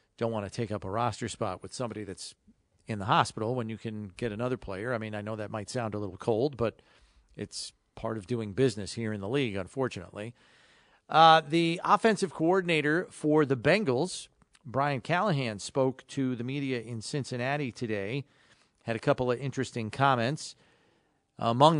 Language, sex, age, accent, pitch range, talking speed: English, male, 40-59, American, 115-145 Hz, 175 wpm